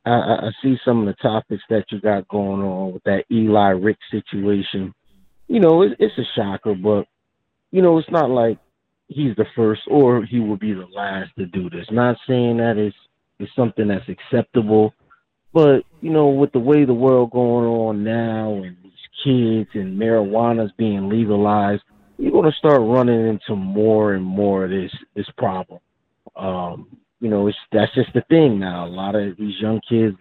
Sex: male